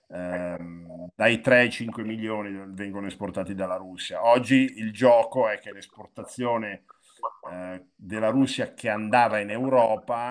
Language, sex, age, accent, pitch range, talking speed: Italian, male, 50-69, native, 95-115 Hz, 130 wpm